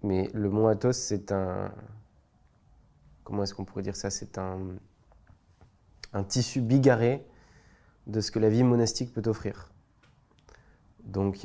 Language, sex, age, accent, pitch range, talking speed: French, male, 20-39, French, 100-115 Hz, 140 wpm